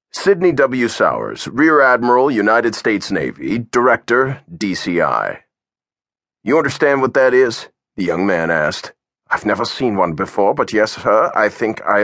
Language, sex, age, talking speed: English, male, 40-59, 150 wpm